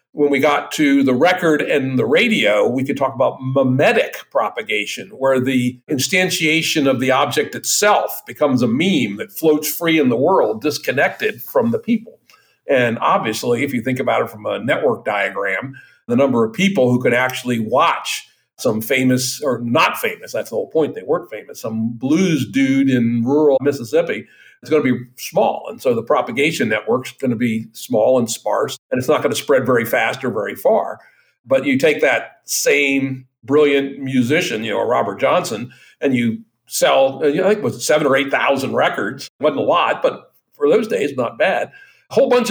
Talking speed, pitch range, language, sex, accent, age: 190 wpm, 125-185 Hz, English, male, American, 50-69